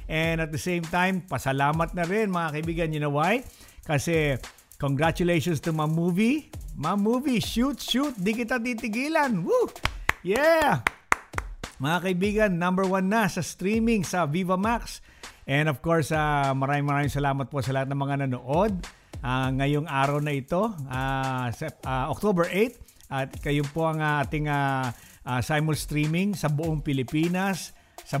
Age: 50-69